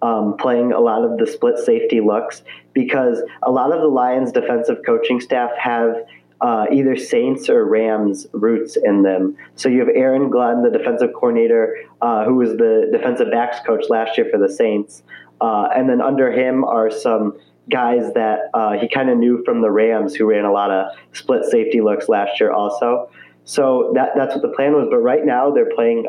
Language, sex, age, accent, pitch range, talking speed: English, male, 30-49, American, 110-150 Hz, 200 wpm